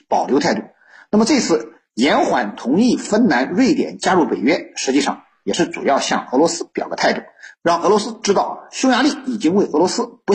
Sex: male